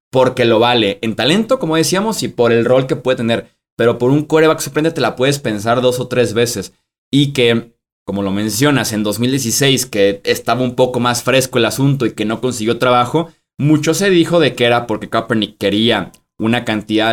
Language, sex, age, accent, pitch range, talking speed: Spanish, male, 20-39, Mexican, 110-140 Hz, 205 wpm